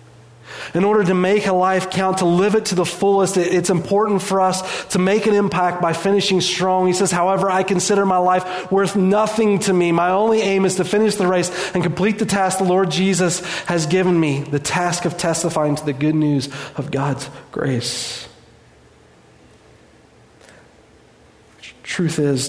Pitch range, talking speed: 125-180 Hz, 175 wpm